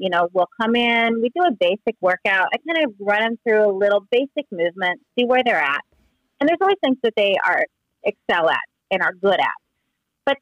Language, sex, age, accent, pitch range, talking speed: English, female, 30-49, American, 205-275 Hz, 220 wpm